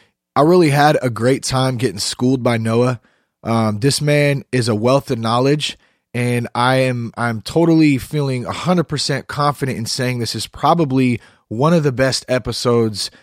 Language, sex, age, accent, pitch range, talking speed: English, male, 30-49, American, 115-140 Hz, 160 wpm